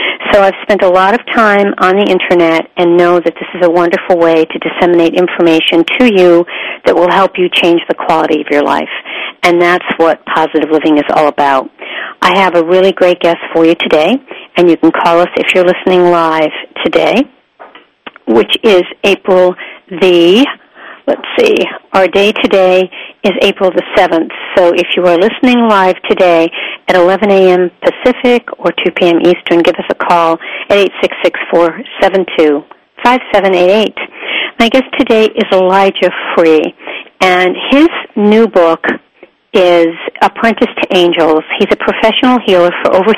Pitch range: 170-200 Hz